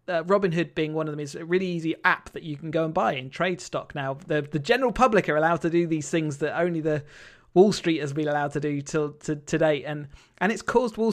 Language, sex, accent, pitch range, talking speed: English, male, British, 150-180 Hz, 265 wpm